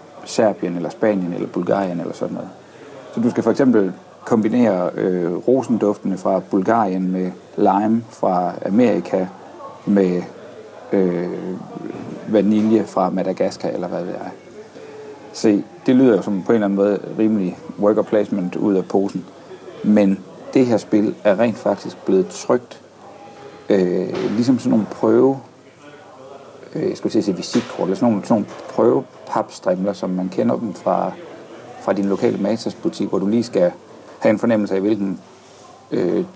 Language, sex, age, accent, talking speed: Danish, male, 60-79, native, 145 wpm